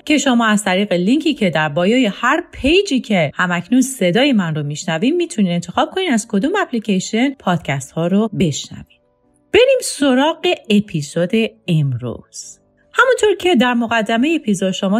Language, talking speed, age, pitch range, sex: English, 145 wpm, 40-59, 155-235 Hz, female